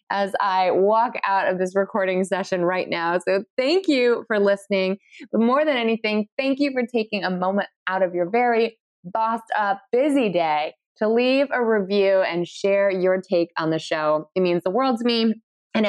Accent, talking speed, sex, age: American, 195 wpm, female, 20-39